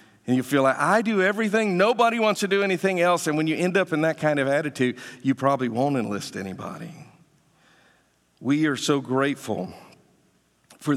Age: 50-69